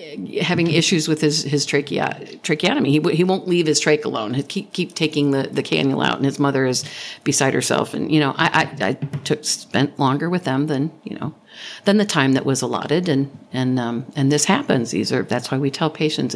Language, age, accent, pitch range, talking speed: English, 50-69, American, 140-215 Hz, 230 wpm